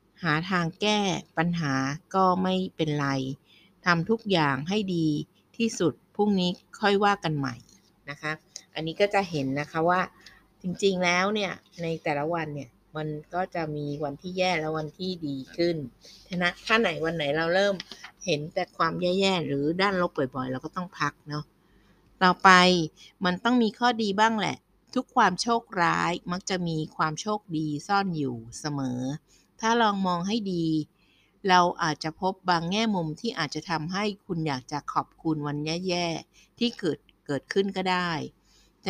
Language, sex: Thai, female